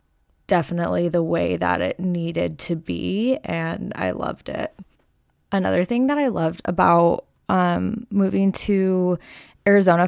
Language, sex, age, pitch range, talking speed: English, female, 20-39, 165-190 Hz, 130 wpm